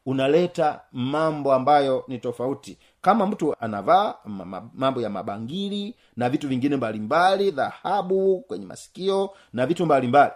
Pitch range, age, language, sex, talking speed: 135-180 Hz, 40-59, Swahili, male, 125 wpm